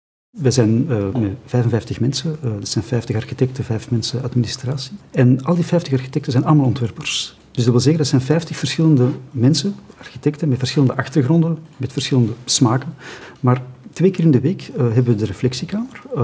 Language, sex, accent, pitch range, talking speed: English, male, Dutch, 120-150 Hz, 175 wpm